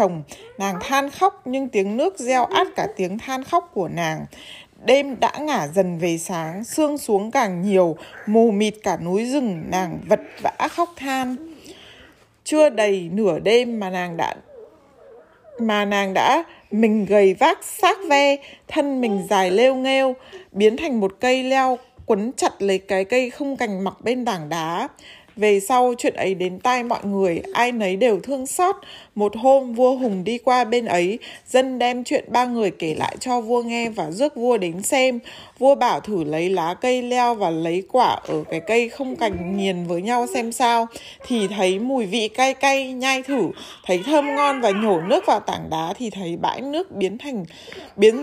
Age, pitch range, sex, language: 20-39, 195-270 Hz, female, Vietnamese